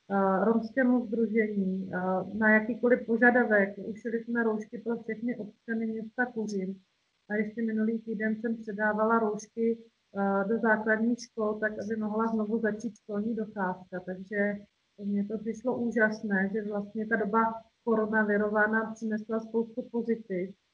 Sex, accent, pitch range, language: female, native, 215-230 Hz, Czech